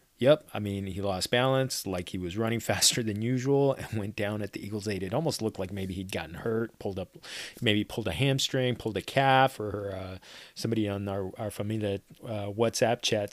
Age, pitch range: 30-49, 100-115 Hz